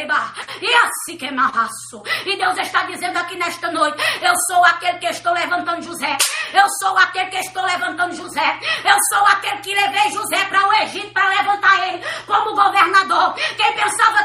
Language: Portuguese